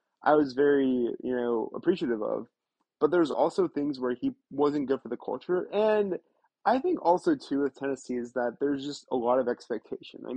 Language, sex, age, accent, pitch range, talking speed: English, male, 20-39, American, 120-145 Hz, 195 wpm